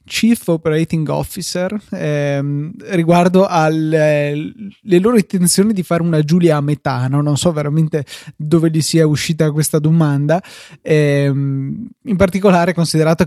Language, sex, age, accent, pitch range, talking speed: Italian, male, 20-39, native, 145-170 Hz, 125 wpm